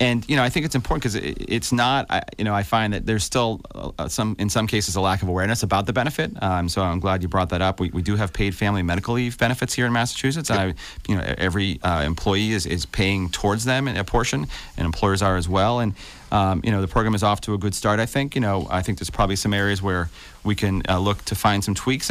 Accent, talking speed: American, 270 wpm